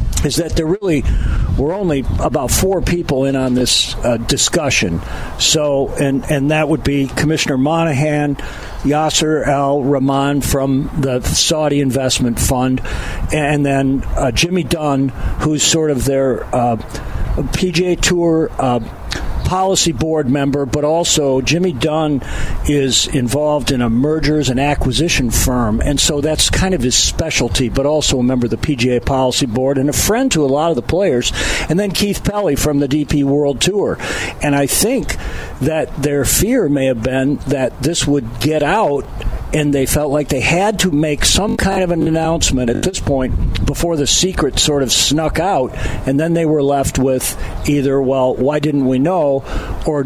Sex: male